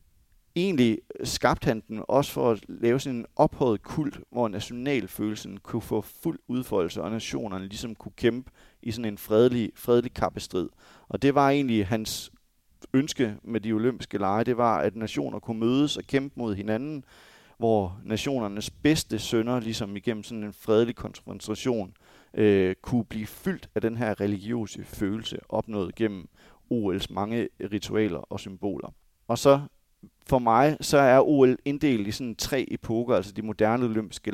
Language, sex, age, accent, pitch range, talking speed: Danish, male, 30-49, native, 105-120 Hz, 160 wpm